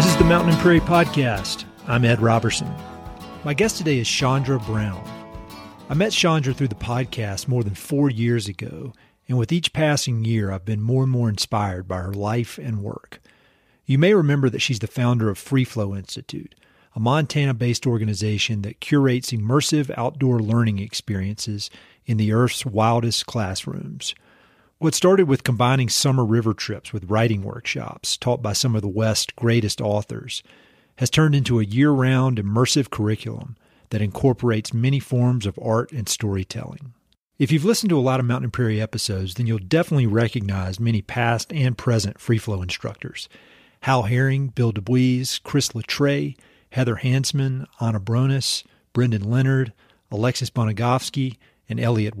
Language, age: English, 40-59